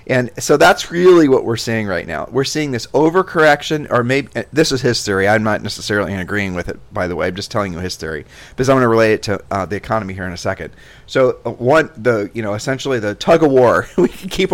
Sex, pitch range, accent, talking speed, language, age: male, 105-135 Hz, American, 250 wpm, English, 40-59